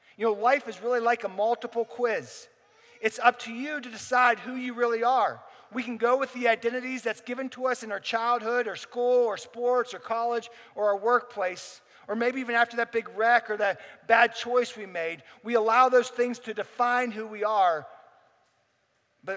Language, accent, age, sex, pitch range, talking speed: English, American, 50-69, male, 200-245 Hz, 200 wpm